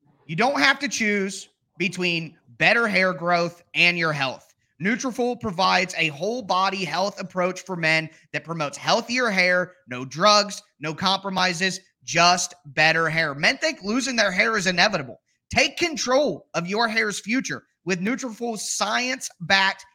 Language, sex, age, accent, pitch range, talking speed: English, male, 30-49, American, 165-215 Hz, 145 wpm